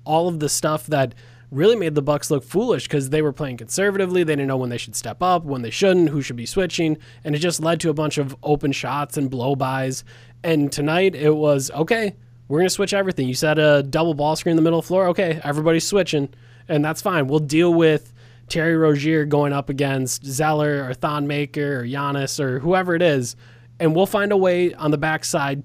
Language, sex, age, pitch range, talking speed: English, male, 20-39, 130-165 Hz, 225 wpm